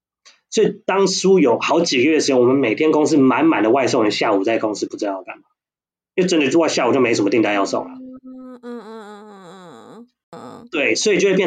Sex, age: male, 20-39